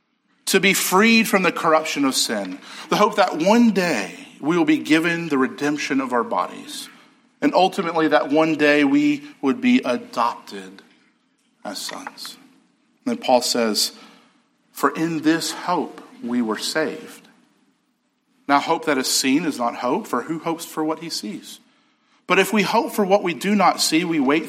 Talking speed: 170 wpm